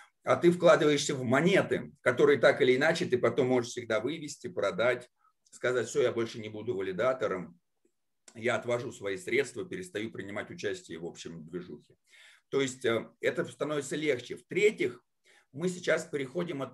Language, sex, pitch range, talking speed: Russian, male, 130-185 Hz, 150 wpm